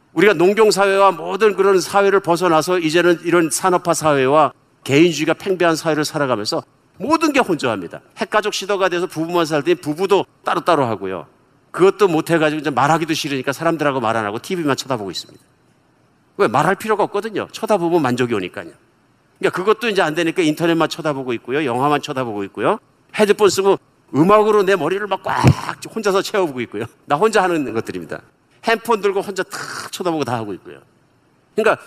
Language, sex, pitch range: Korean, male, 140-195 Hz